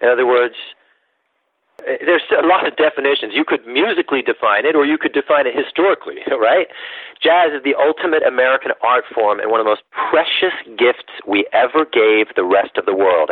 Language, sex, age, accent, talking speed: English, male, 40-59, American, 190 wpm